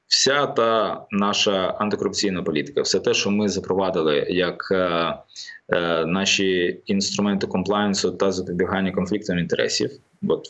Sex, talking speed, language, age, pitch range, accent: male, 115 wpm, Ukrainian, 20-39, 90-105 Hz, native